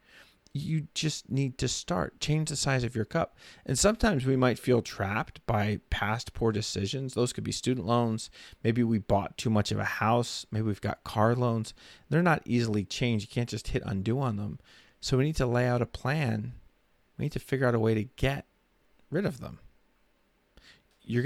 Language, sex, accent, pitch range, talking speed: English, male, American, 110-135 Hz, 200 wpm